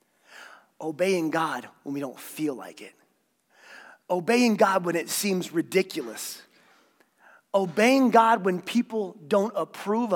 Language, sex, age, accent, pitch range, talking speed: English, male, 30-49, American, 175-235 Hz, 120 wpm